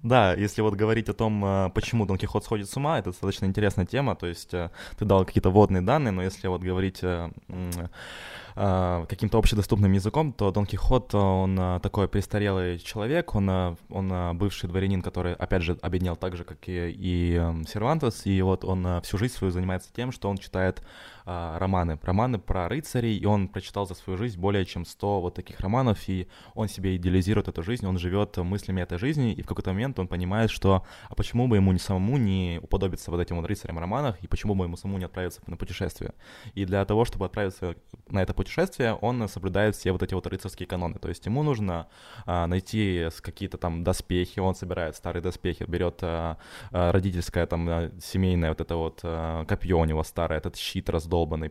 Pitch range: 90-105 Hz